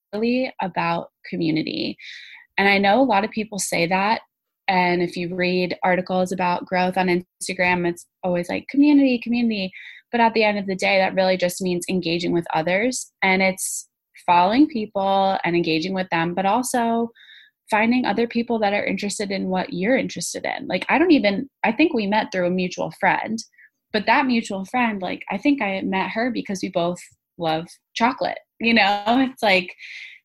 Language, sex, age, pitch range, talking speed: English, female, 20-39, 175-220 Hz, 180 wpm